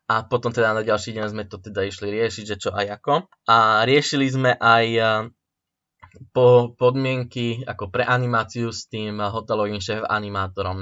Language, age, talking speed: Slovak, 20-39, 160 wpm